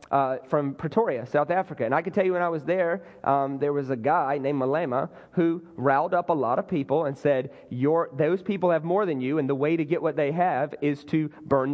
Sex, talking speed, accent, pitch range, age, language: male, 245 wpm, American, 180-265 Hz, 30-49, English